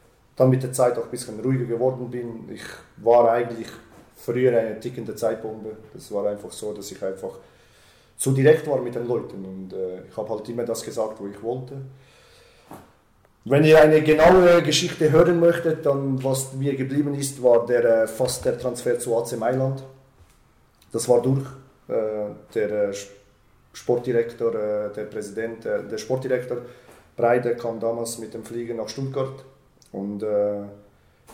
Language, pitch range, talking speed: German, 105-130 Hz, 165 wpm